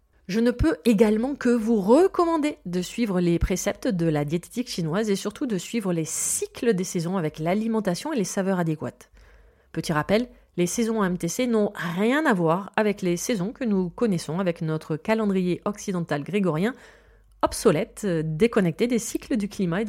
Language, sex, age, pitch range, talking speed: French, female, 30-49, 170-235 Hz, 170 wpm